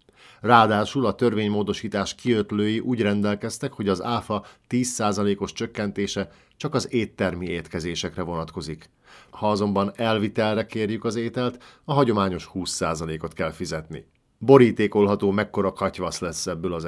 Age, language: 50-69, Hungarian